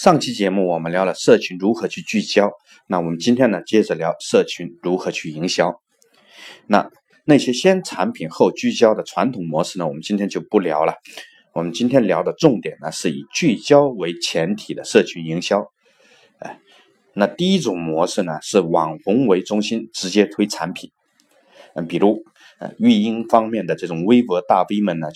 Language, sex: Chinese, male